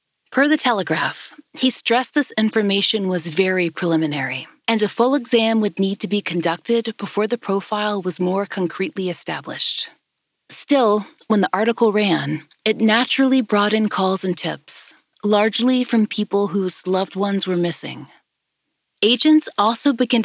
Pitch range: 185-235 Hz